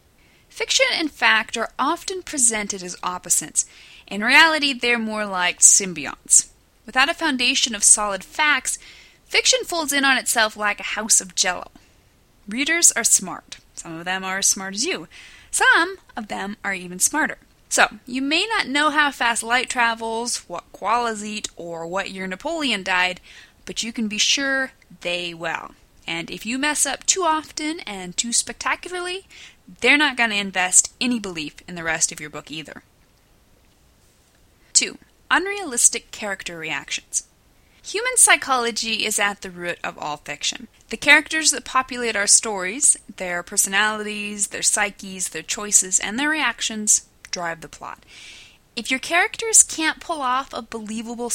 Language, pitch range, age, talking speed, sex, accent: English, 195-280 Hz, 10-29, 155 wpm, female, American